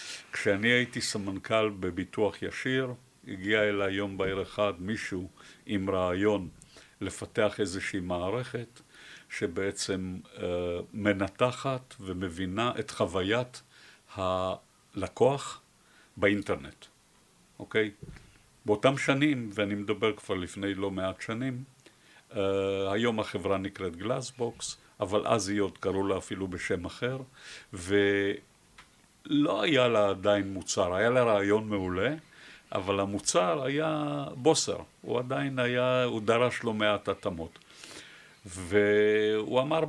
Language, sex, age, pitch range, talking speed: Hebrew, male, 50-69, 95-125 Hz, 105 wpm